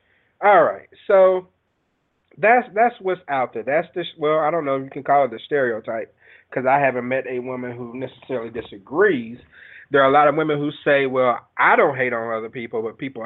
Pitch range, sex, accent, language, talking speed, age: 120-150 Hz, male, American, English, 210 wpm, 30-49